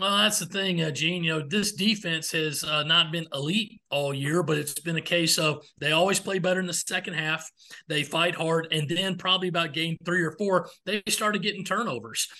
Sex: male